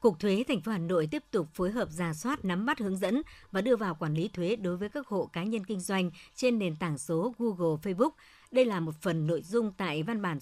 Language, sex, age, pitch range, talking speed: Vietnamese, male, 60-79, 165-220 Hz, 260 wpm